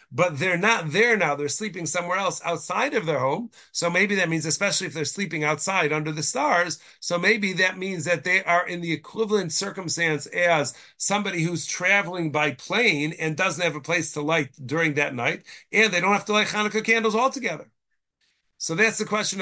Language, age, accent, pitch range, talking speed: English, 40-59, American, 155-200 Hz, 200 wpm